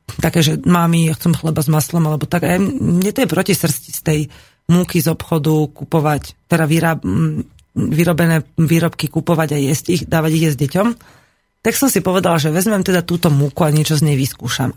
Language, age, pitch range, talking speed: Slovak, 30-49, 140-170 Hz, 190 wpm